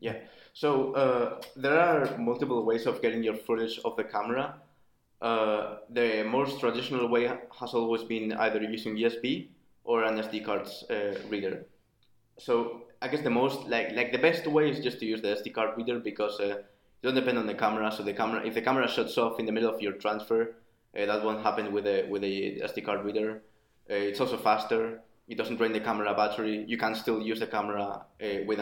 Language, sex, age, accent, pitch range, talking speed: English, male, 20-39, Spanish, 105-120 Hz, 210 wpm